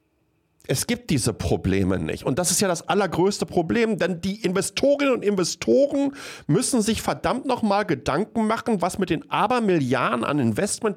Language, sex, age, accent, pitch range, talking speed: German, male, 50-69, German, 140-215 Hz, 160 wpm